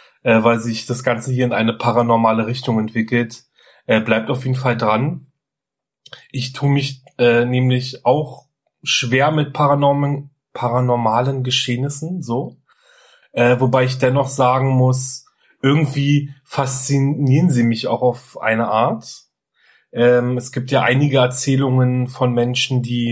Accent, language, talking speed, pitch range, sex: German, German, 130 wpm, 115-135 Hz, male